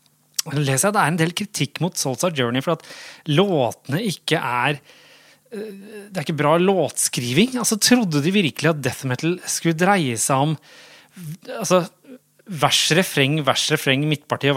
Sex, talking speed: male, 175 wpm